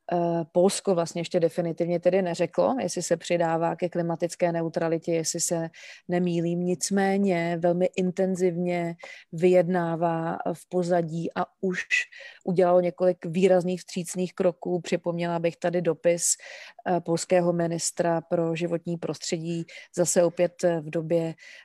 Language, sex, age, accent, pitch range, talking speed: Czech, female, 30-49, native, 170-185 Hz, 115 wpm